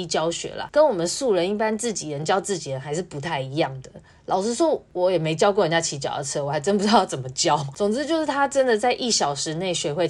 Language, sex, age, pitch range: Chinese, female, 20-39, 160-215 Hz